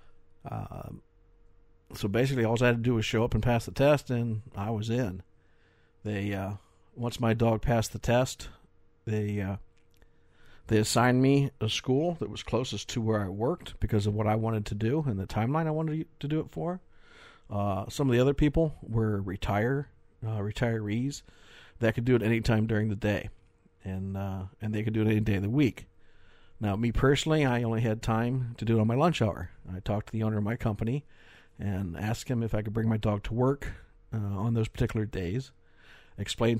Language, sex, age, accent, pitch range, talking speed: English, male, 50-69, American, 100-120 Hz, 205 wpm